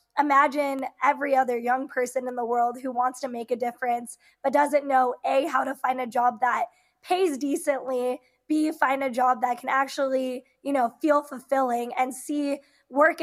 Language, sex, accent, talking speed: English, female, American, 180 wpm